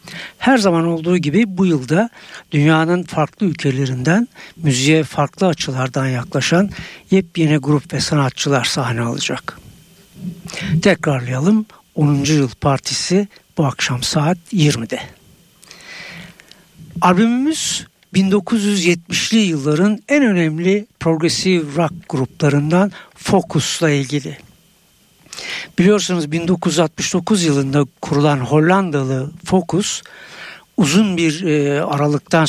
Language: Turkish